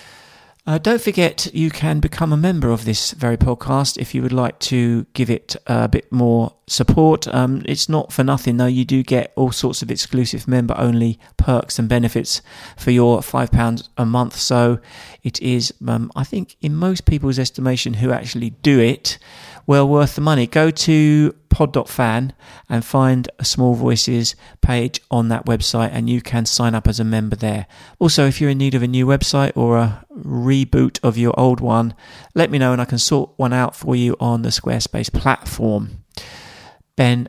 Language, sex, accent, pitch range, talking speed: English, male, British, 120-145 Hz, 190 wpm